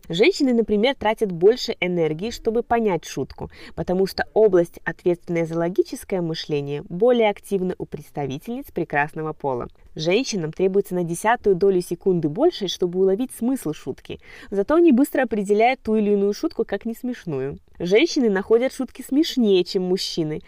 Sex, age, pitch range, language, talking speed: female, 20-39, 165-215 Hz, Russian, 145 wpm